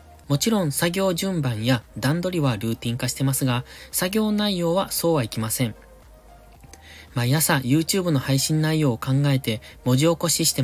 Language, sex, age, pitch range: Japanese, male, 20-39, 115-160 Hz